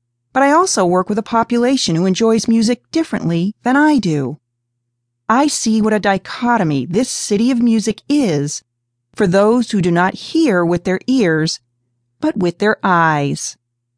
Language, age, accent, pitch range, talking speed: English, 40-59, American, 150-235 Hz, 160 wpm